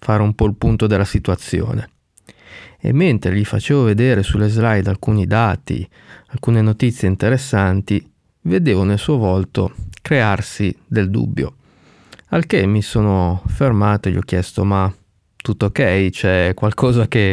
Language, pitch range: Italian, 100-130 Hz